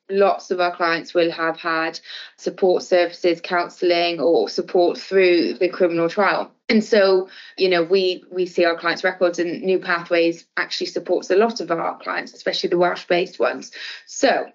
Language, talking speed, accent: English, 170 wpm, British